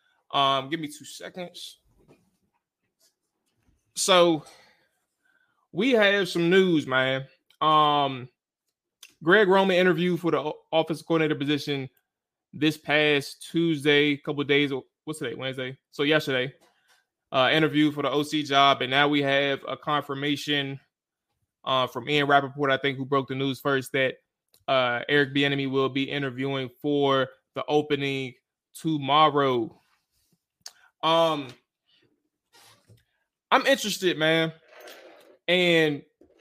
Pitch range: 140-165 Hz